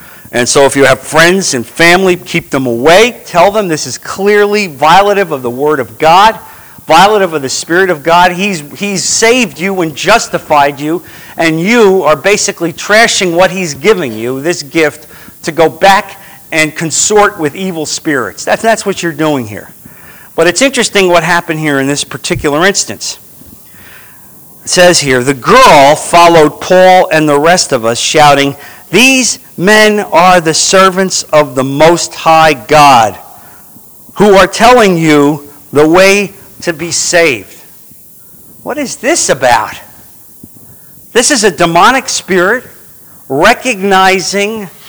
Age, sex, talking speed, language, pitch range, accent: 50-69, male, 150 wpm, English, 150-195 Hz, American